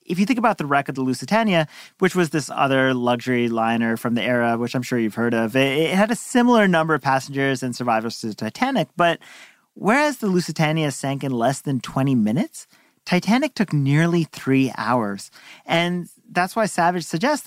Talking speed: 190 wpm